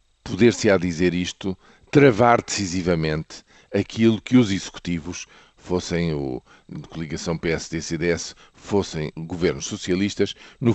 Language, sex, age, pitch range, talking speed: Portuguese, male, 50-69, 90-115 Hz, 95 wpm